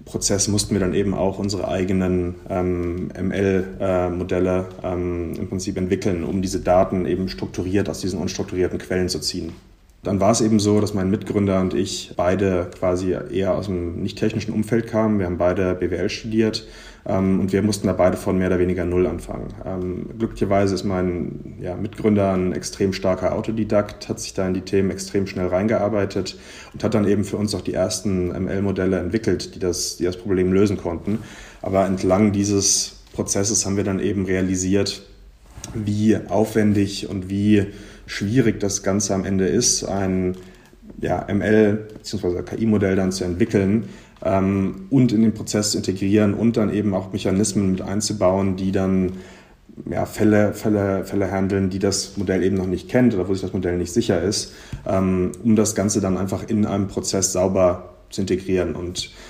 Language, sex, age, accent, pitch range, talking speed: German, male, 30-49, German, 90-105 Hz, 170 wpm